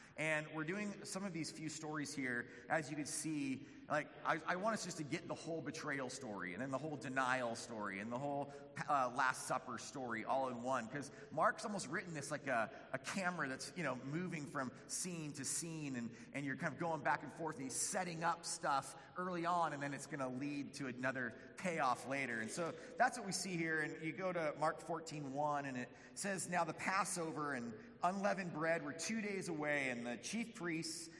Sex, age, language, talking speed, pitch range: male, 30-49, English, 220 wpm, 135-180 Hz